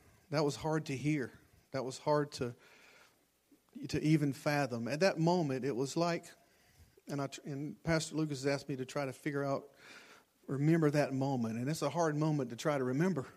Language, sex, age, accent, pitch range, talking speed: English, male, 50-69, American, 125-155 Hz, 190 wpm